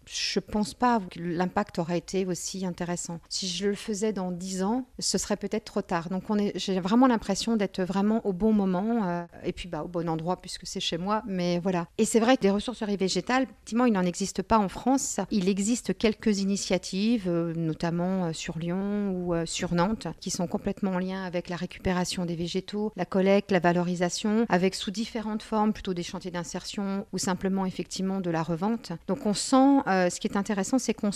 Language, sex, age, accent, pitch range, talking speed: French, female, 50-69, French, 185-225 Hz, 210 wpm